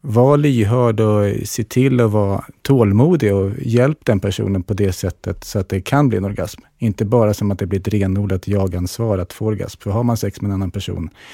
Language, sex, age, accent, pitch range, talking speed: English, male, 30-49, Norwegian, 95-115 Hz, 220 wpm